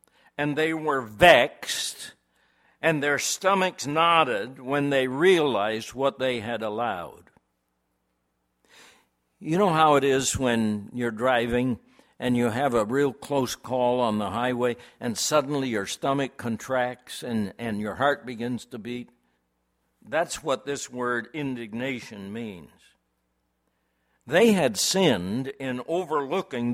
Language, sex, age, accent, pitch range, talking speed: English, male, 60-79, American, 110-145 Hz, 125 wpm